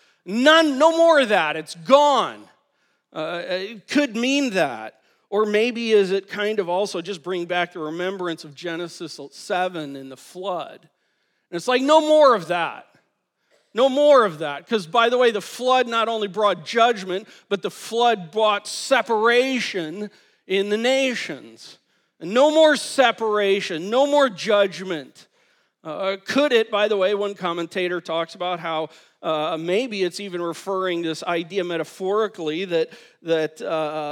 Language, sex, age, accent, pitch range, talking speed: English, male, 40-59, American, 165-230 Hz, 155 wpm